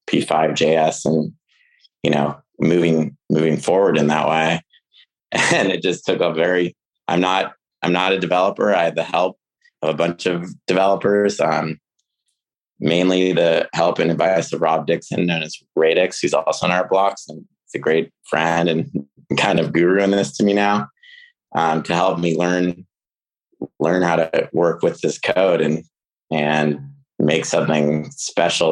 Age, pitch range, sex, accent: 30-49, 80-90 Hz, male, American